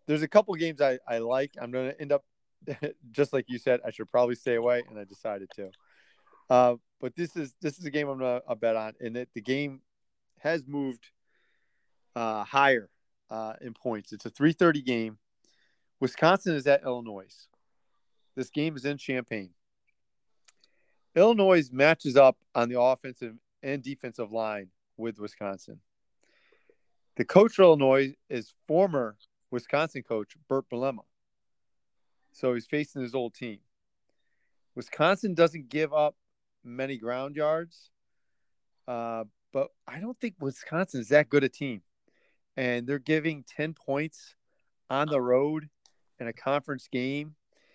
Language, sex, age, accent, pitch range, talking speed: English, male, 40-59, American, 120-155 Hz, 150 wpm